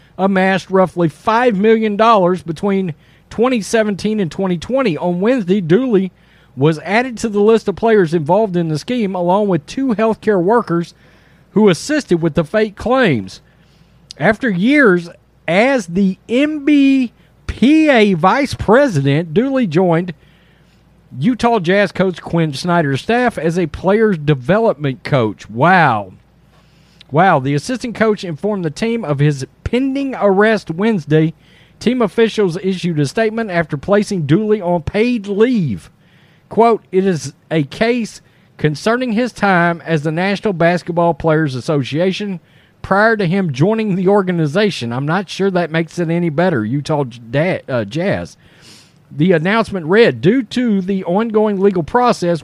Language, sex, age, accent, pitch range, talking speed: English, male, 40-59, American, 160-220 Hz, 135 wpm